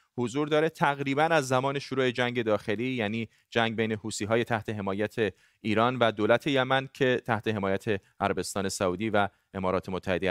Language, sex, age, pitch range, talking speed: Persian, male, 30-49, 115-140 Hz, 155 wpm